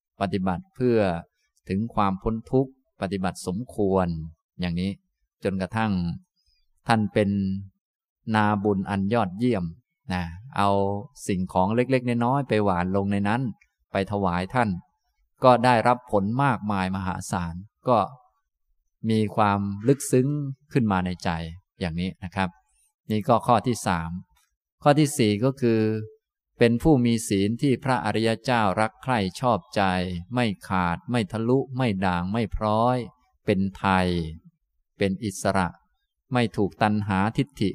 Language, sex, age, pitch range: Thai, male, 20-39, 95-120 Hz